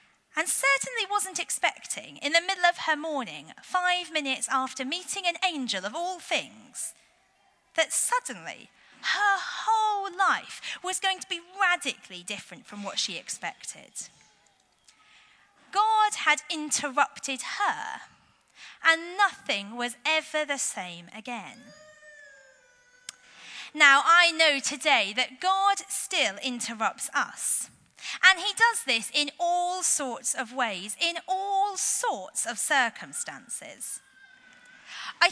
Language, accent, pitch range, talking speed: English, British, 270-375 Hz, 115 wpm